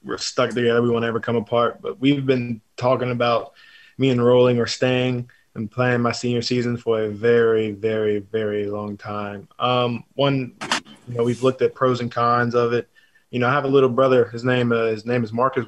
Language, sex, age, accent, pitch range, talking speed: English, male, 20-39, American, 110-120 Hz, 210 wpm